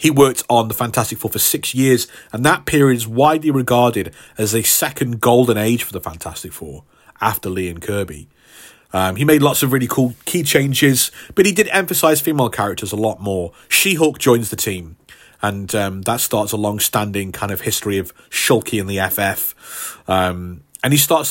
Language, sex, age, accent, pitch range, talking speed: English, male, 30-49, British, 100-125 Hz, 190 wpm